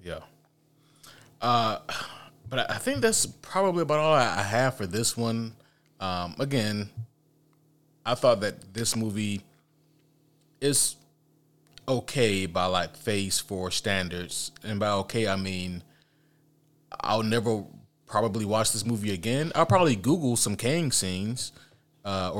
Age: 30-49